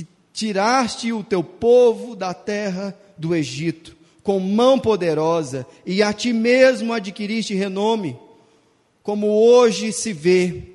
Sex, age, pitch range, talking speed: male, 40-59, 155-220 Hz, 115 wpm